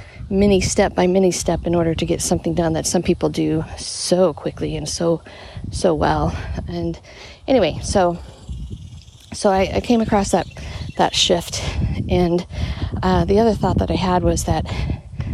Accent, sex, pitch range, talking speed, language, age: American, female, 165-195 Hz, 165 wpm, English, 40-59